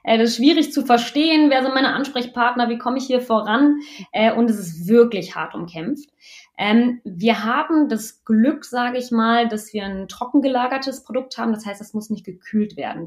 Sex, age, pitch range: female, 20-39, 195-255 Hz